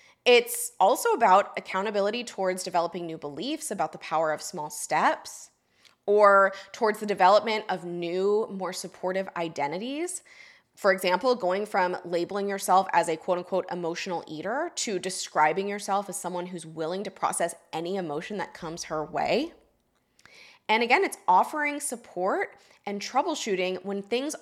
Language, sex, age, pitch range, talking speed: English, female, 20-39, 175-225 Hz, 145 wpm